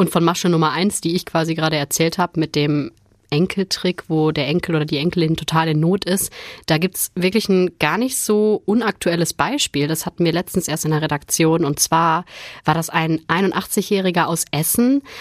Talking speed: 195 wpm